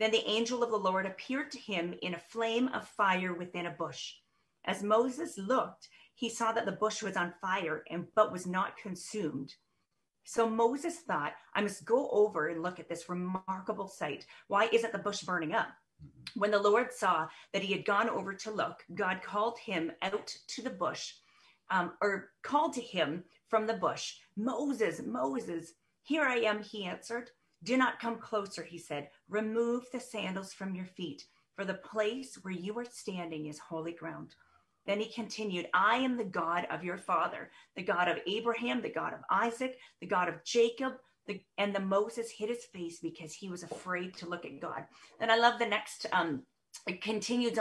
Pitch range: 180-230 Hz